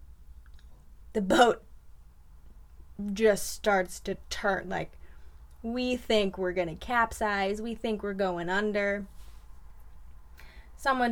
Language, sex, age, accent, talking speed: English, female, 20-39, American, 105 wpm